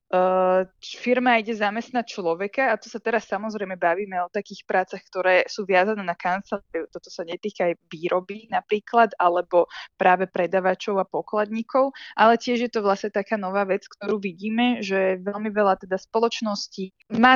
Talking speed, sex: 160 wpm, female